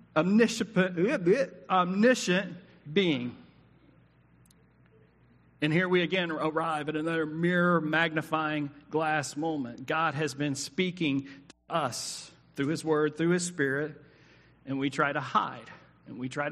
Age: 40-59